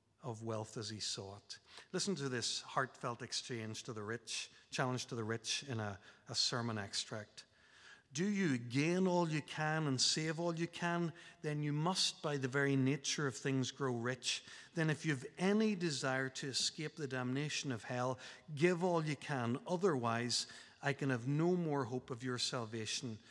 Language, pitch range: English, 110-140 Hz